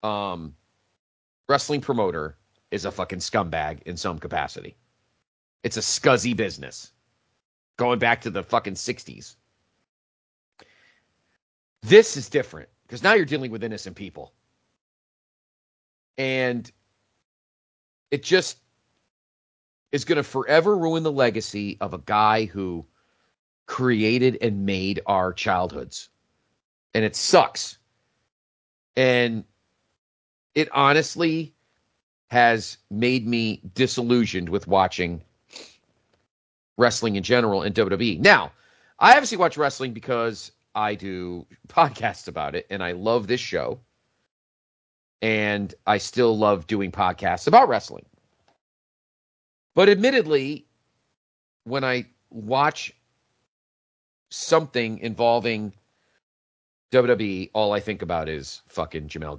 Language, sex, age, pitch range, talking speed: English, male, 40-59, 95-130 Hz, 110 wpm